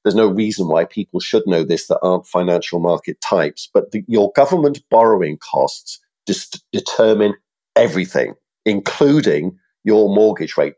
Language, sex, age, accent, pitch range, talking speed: English, male, 50-69, British, 95-125 Hz, 140 wpm